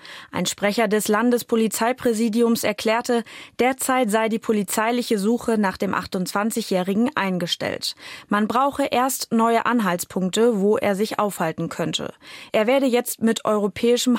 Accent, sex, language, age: German, female, German, 20-39